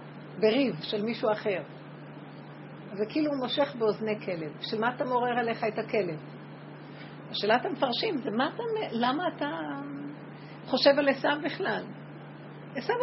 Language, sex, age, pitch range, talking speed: Hebrew, female, 50-69, 210-260 Hz, 125 wpm